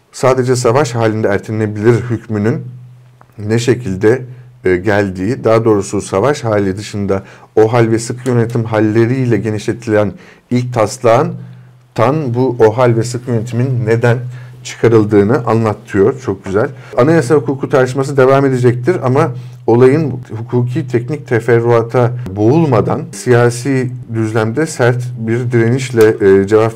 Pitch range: 110-125 Hz